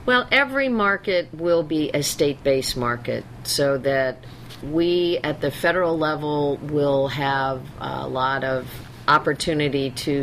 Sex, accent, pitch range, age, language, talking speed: female, American, 125-145 Hz, 50-69, English, 130 wpm